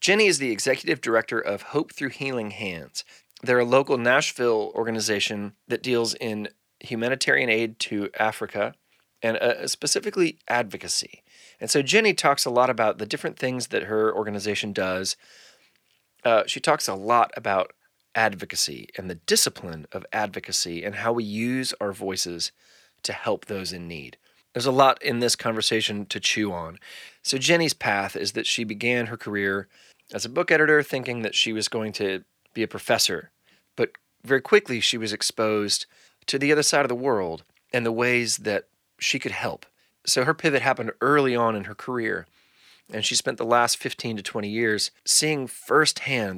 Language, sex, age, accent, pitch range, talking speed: English, male, 30-49, American, 105-135 Hz, 175 wpm